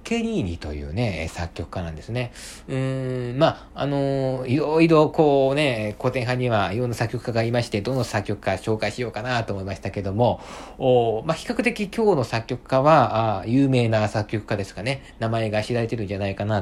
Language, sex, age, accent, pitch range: Japanese, male, 50-69, native, 100-135 Hz